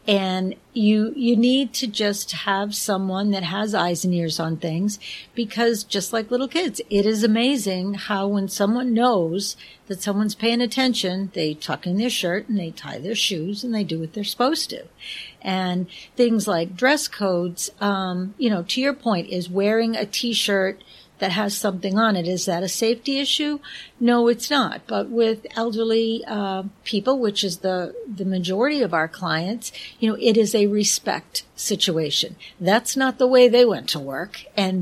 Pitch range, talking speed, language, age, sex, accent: 190-230 Hz, 180 wpm, English, 50-69, female, American